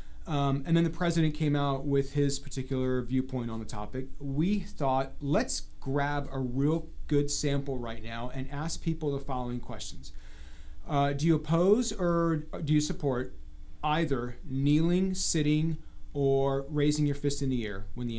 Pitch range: 130-160 Hz